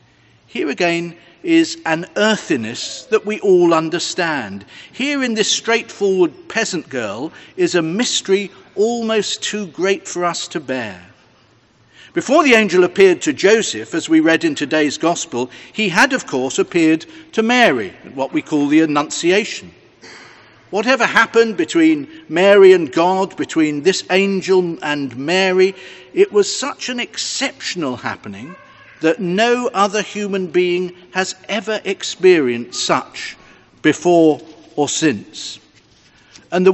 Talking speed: 130 wpm